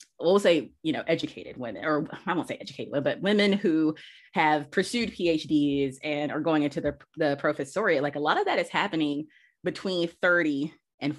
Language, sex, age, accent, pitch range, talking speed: English, female, 30-49, American, 145-170 Hz, 180 wpm